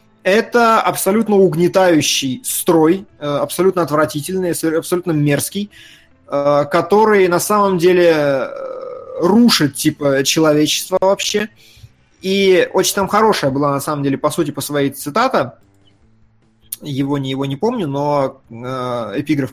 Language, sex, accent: Russian, male, native